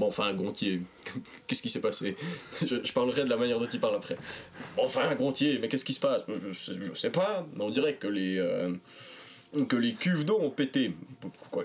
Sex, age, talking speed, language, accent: male, 20-39, 215 wpm, French, French